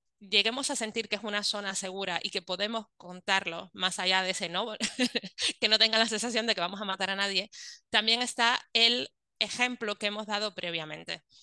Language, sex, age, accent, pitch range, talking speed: Spanish, female, 20-39, Spanish, 185-225 Hz, 195 wpm